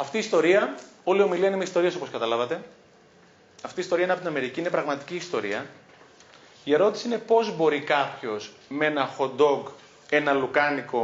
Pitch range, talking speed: 140-205 Hz, 175 wpm